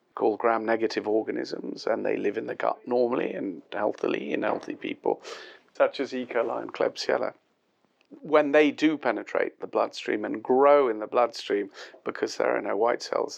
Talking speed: 170 wpm